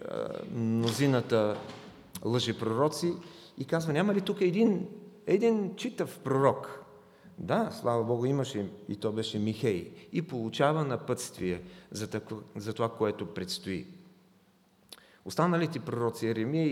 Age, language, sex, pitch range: 40-59, English, male, 105-165 Hz